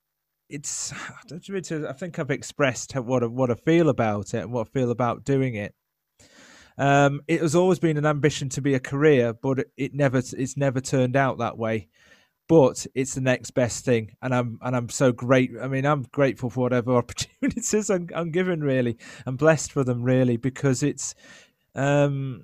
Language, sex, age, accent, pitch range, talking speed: English, male, 30-49, British, 120-145 Hz, 190 wpm